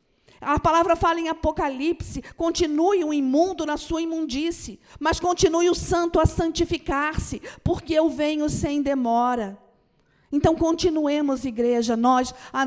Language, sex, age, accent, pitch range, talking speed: Portuguese, female, 50-69, Brazilian, 255-320 Hz, 130 wpm